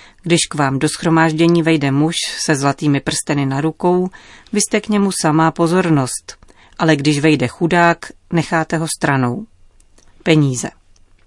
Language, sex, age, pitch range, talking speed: Czech, female, 40-59, 135-180 Hz, 140 wpm